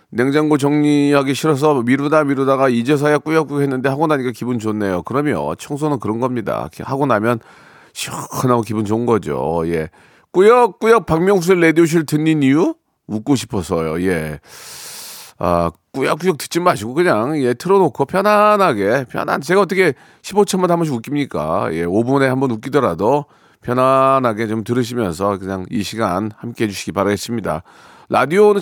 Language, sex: Korean, male